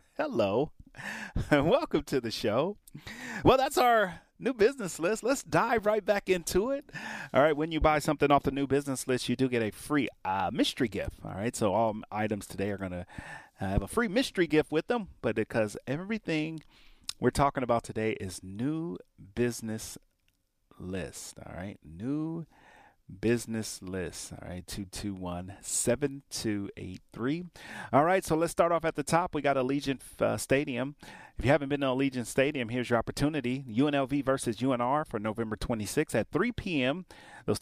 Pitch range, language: 105-155 Hz, English